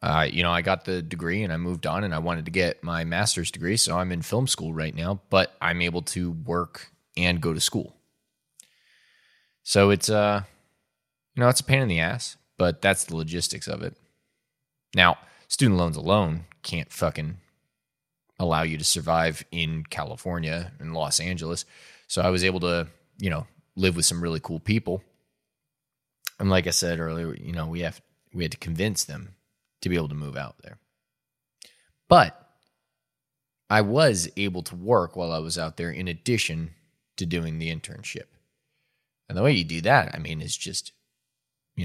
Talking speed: 185 wpm